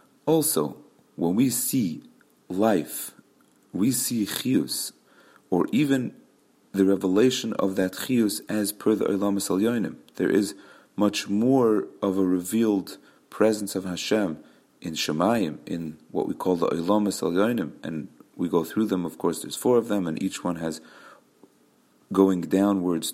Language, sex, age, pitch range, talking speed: English, male, 40-59, 95-115 Hz, 145 wpm